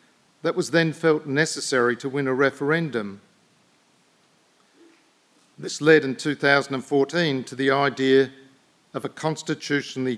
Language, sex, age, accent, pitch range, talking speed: English, male, 50-69, Australian, 130-150 Hz, 110 wpm